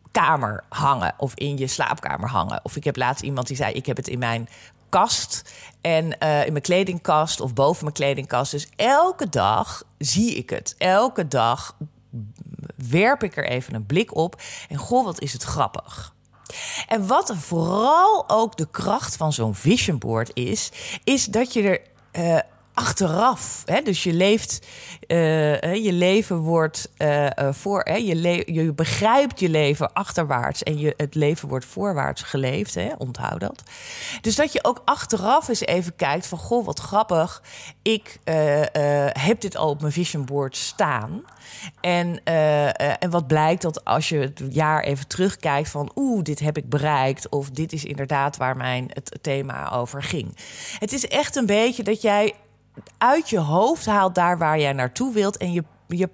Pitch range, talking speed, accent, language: 140-195 Hz, 175 wpm, Dutch, Dutch